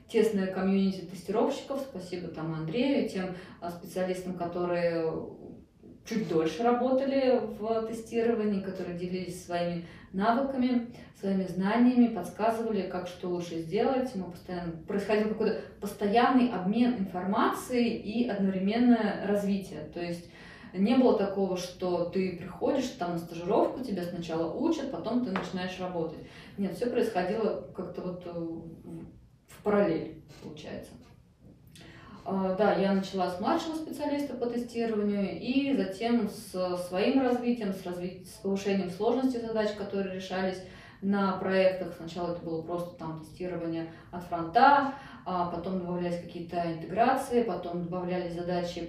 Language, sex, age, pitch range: Russian, female, 20-39, 175-225 Hz